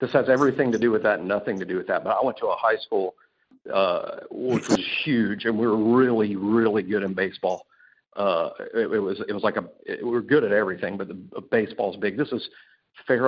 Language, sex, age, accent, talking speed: English, male, 50-69, American, 250 wpm